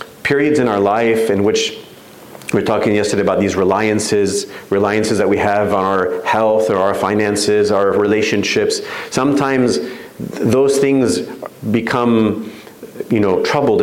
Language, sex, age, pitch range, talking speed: English, male, 40-59, 95-115 Hz, 145 wpm